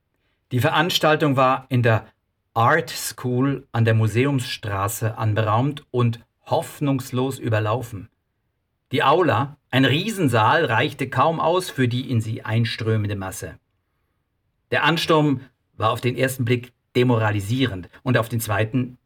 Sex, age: male, 50-69